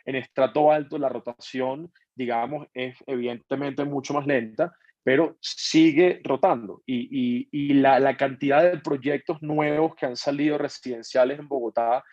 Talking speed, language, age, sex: 145 wpm, Spanish, 20-39, male